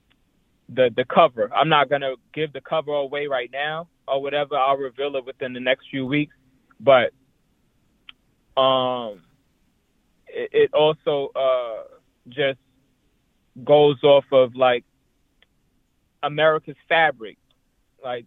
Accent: American